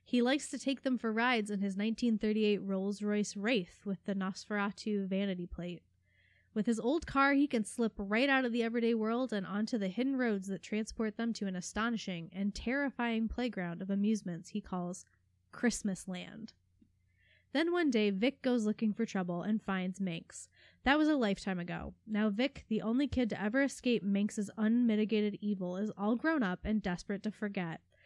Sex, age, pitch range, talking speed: female, 20-39, 190-235 Hz, 185 wpm